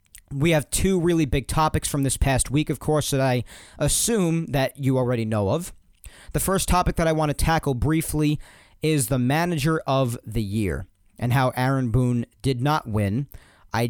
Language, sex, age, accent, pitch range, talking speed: English, male, 40-59, American, 110-160 Hz, 185 wpm